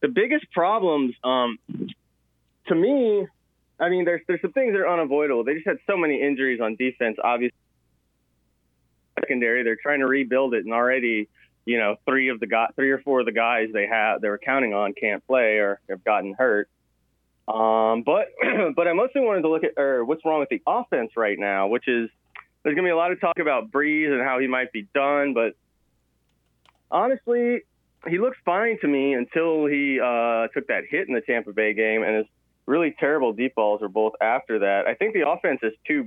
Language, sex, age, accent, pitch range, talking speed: English, male, 20-39, American, 110-150 Hz, 210 wpm